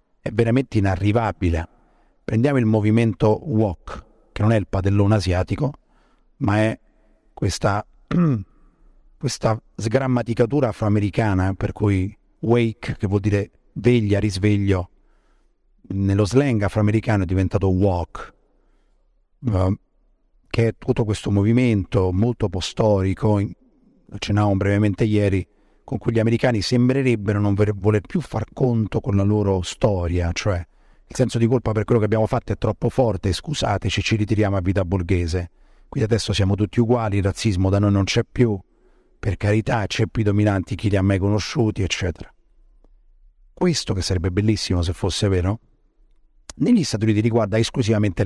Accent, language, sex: native, Italian, male